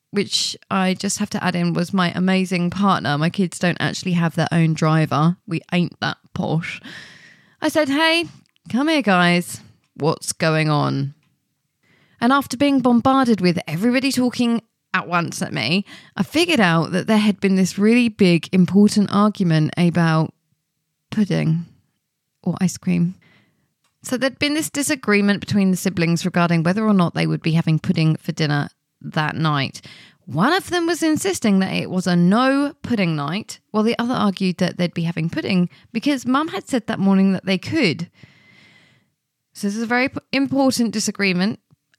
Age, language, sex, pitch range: 20-39, English, female, 165-220 Hz